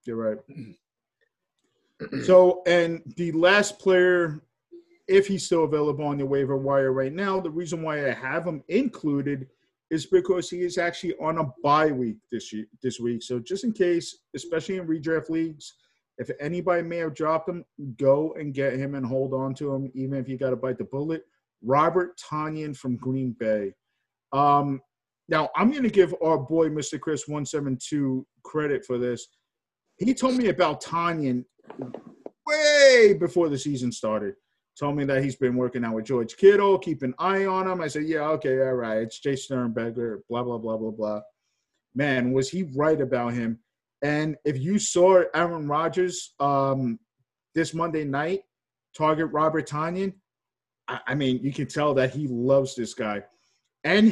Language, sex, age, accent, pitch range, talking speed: English, male, 50-69, American, 130-175 Hz, 175 wpm